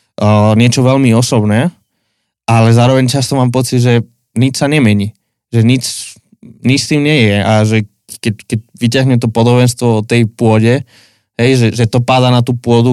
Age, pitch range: 20-39, 110-130 Hz